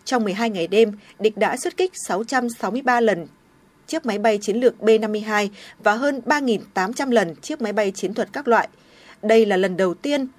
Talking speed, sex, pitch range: 185 wpm, female, 210-255 Hz